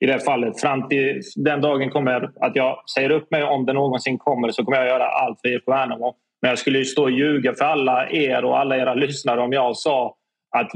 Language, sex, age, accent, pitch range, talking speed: Swedish, male, 20-39, native, 125-150 Hz, 245 wpm